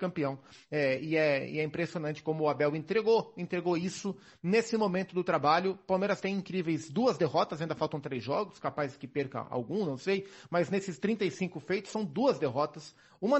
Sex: male